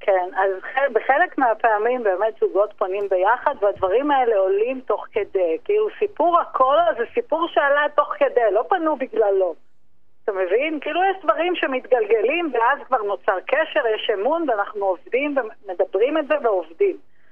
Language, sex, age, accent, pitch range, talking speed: Hebrew, female, 50-69, native, 220-345 Hz, 150 wpm